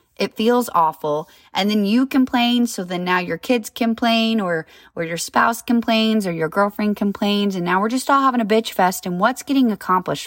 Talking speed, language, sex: 205 wpm, English, female